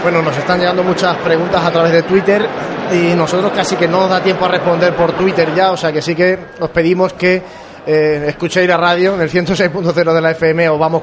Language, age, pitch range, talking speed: Spanish, 20-39, 160-175 Hz, 235 wpm